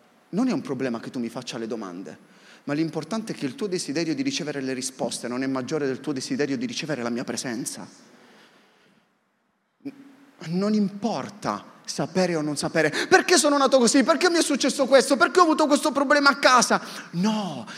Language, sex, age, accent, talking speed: Italian, male, 30-49, native, 185 wpm